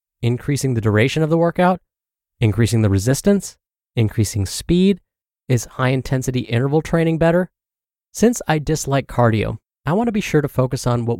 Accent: American